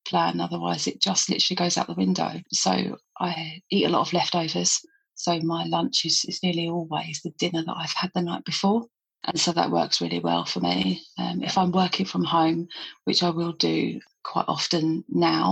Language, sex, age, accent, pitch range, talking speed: English, female, 30-49, British, 155-170 Hz, 200 wpm